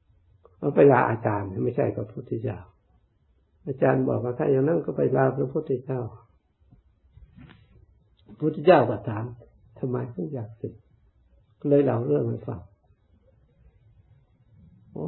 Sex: male